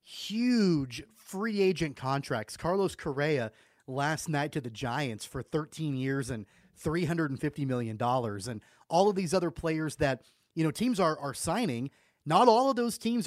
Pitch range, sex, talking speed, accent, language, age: 130-175 Hz, male, 160 wpm, American, English, 30-49